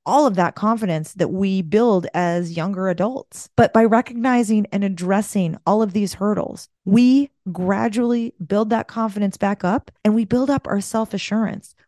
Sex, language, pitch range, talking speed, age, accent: female, English, 190-235 Hz, 160 wpm, 30-49, American